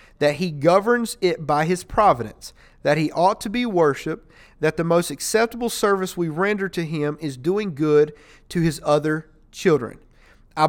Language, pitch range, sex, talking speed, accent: English, 155-200 Hz, male, 170 wpm, American